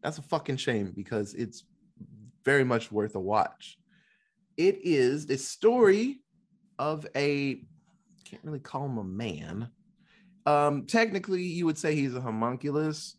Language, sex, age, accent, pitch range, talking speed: English, male, 30-49, American, 120-185 Hz, 145 wpm